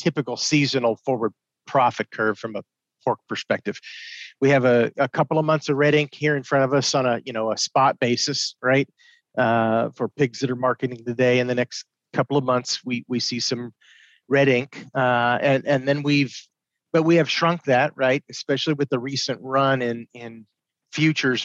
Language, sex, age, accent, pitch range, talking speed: English, male, 40-59, American, 120-145 Hz, 195 wpm